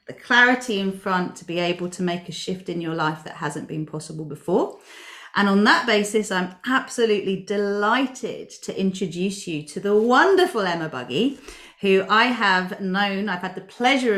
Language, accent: English, British